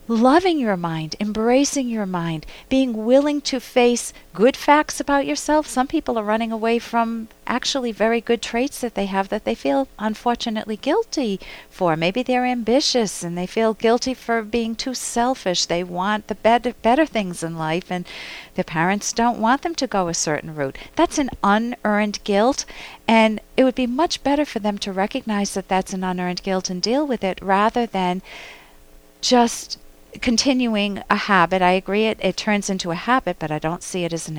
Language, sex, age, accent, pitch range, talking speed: English, female, 50-69, American, 180-240 Hz, 185 wpm